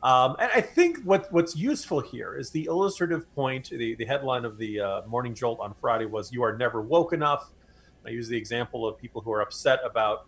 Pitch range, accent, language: 120-160 Hz, American, English